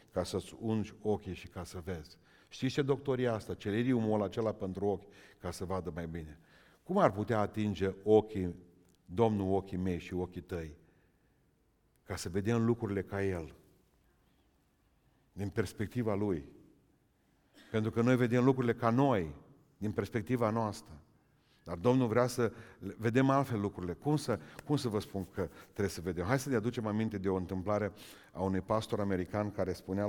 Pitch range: 95-115 Hz